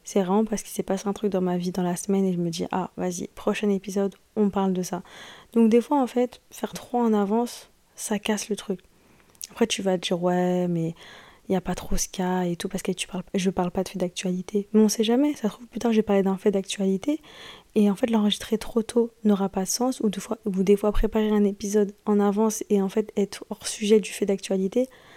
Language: French